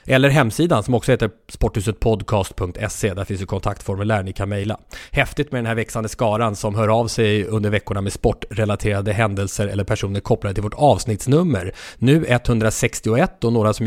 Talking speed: 170 wpm